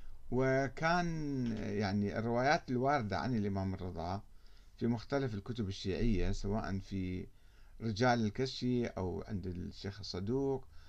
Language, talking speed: Arabic, 105 wpm